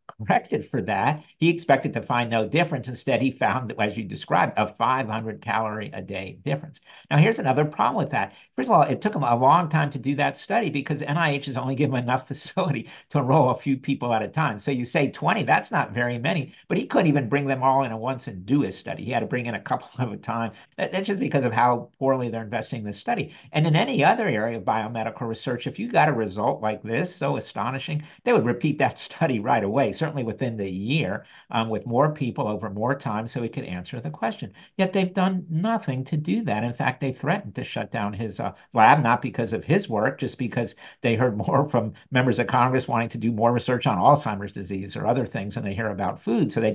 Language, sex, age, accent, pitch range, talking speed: English, male, 50-69, American, 115-150 Hz, 240 wpm